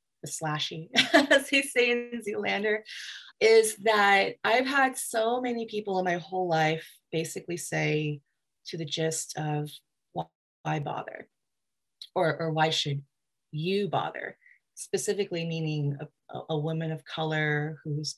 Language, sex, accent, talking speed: English, female, American, 130 wpm